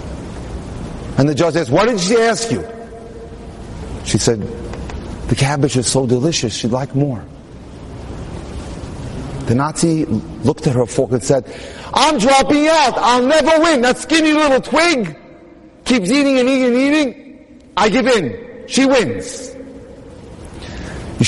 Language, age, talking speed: English, 40-59, 140 wpm